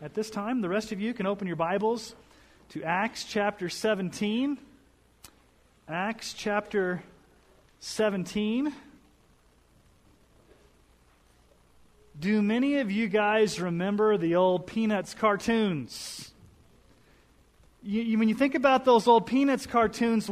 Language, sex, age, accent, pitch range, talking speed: English, male, 30-49, American, 195-245 Hz, 110 wpm